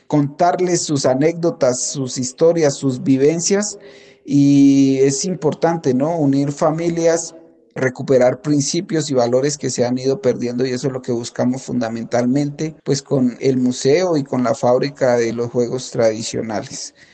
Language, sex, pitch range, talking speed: Spanish, male, 125-145 Hz, 145 wpm